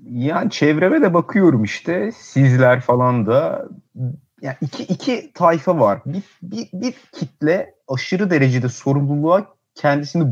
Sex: male